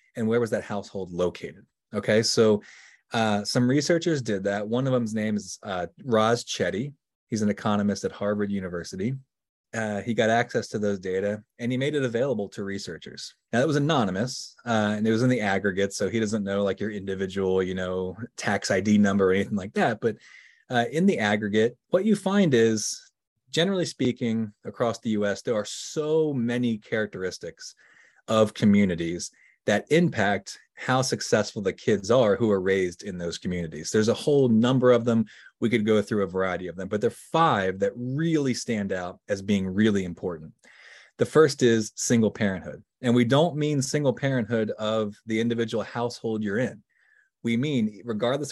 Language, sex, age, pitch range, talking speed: English, male, 30-49, 100-125 Hz, 185 wpm